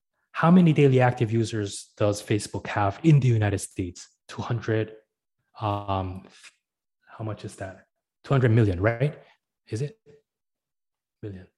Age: 20-39